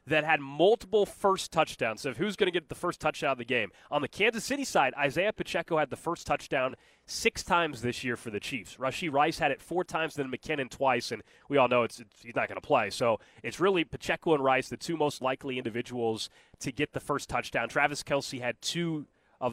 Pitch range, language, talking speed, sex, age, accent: 125-160 Hz, English, 235 wpm, male, 20-39, American